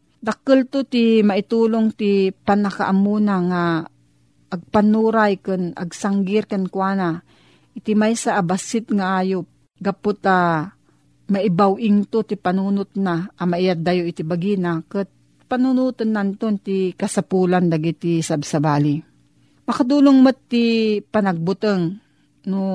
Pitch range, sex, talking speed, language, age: 175-225 Hz, female, 100 wpm, Filipino, 40-59